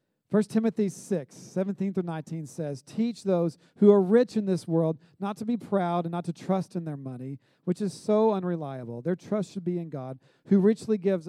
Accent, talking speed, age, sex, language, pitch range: American, 195 wpm, 40-59, male, English, 145-195 Hz